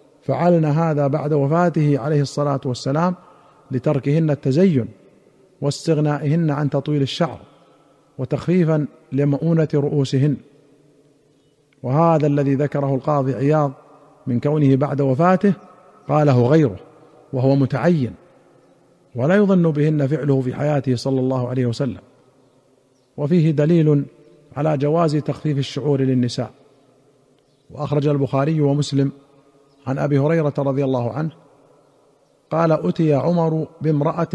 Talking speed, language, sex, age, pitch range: 105 wpm, Arabic, male, 50-69, 135-160 Hz